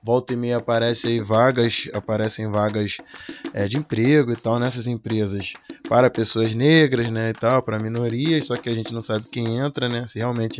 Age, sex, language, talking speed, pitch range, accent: 20-39, male, Portuguese, 185 wpm, 110-145 Hz, Brazilian